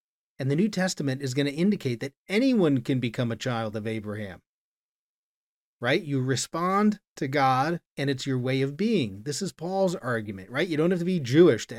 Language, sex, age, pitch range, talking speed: English, male, 40-59, 135-180 Hz, 200 wpm